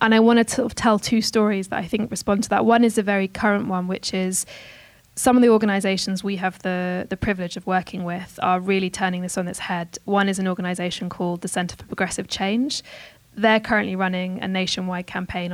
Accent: British